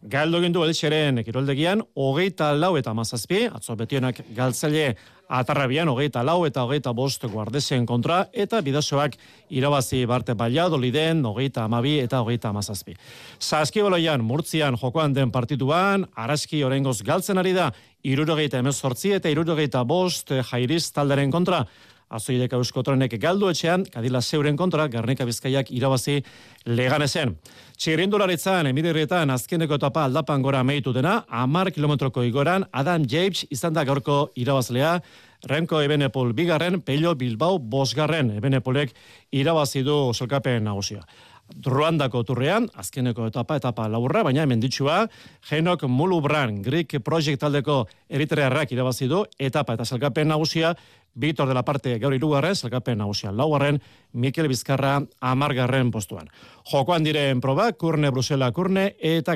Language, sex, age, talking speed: Spanish, male, 40-59, 130 wpm